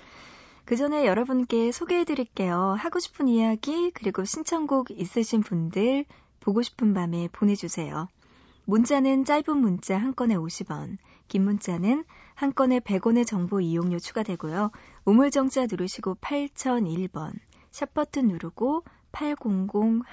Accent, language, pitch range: native, Korean, 180-250 Hz